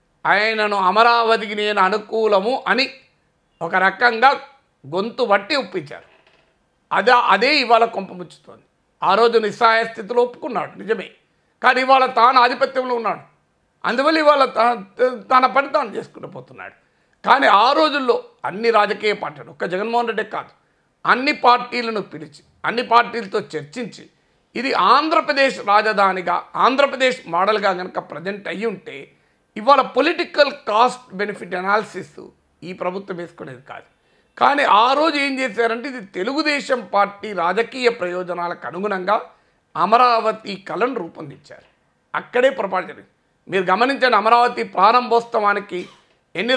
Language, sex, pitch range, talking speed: Telugu, male, 195-255 Hz, 110 wpm